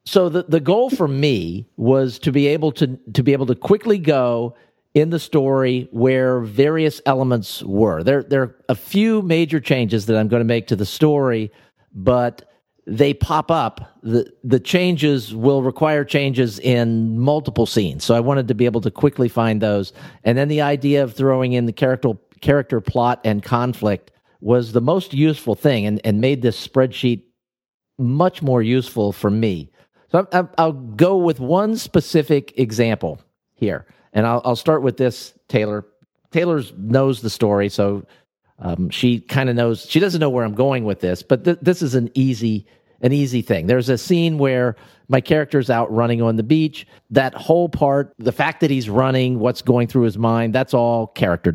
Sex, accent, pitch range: male, American, 115-145 Hz